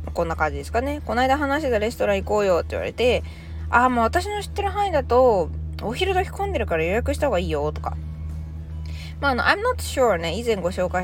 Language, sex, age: Japanese, female, 20-39